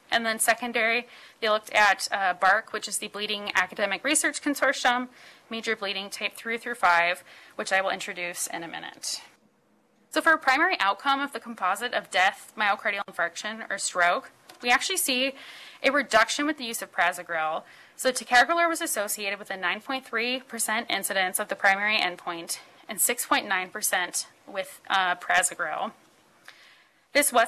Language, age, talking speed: English, 20-39, 155 wpm